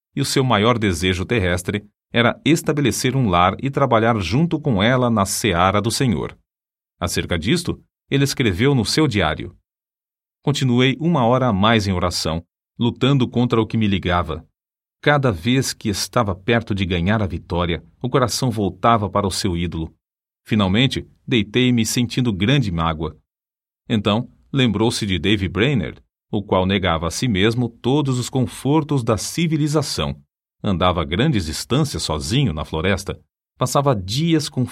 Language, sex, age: English, male, 40-59